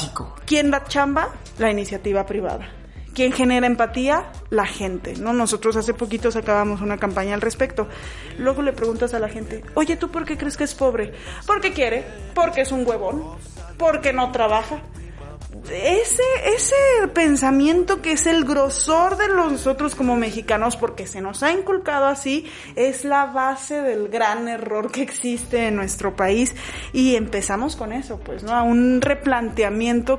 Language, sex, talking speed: Spanish, female, 160 wpm